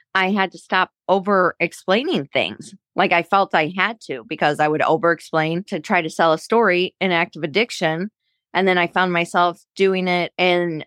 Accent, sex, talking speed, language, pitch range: American, female, 190 wpm, English, 160-195 Hz